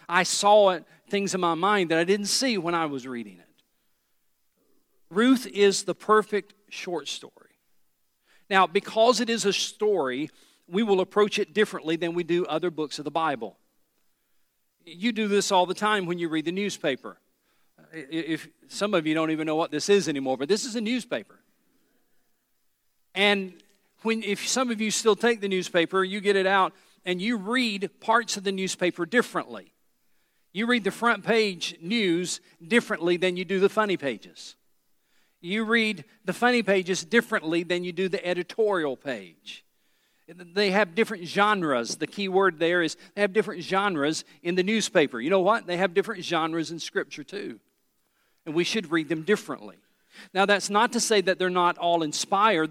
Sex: male